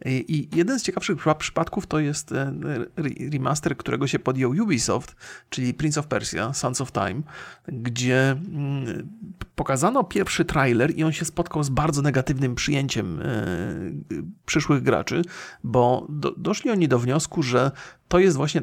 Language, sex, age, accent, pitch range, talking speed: Polish, male, 40-59, native, 130-160 Hz, 135 wpm